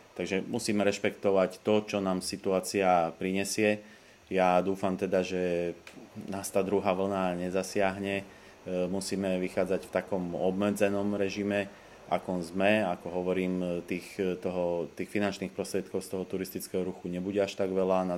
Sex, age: male, 30-49